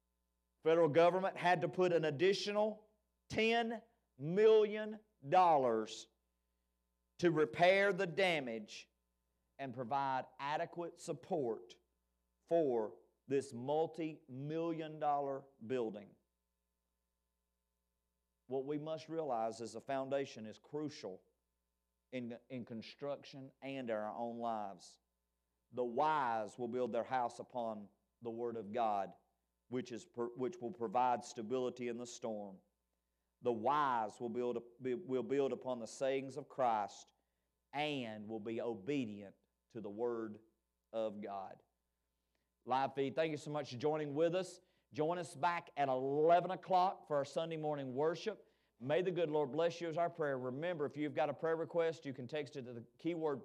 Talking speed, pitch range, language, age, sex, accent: 135 wpm, 110-160 Hz, English, 50-69, male, American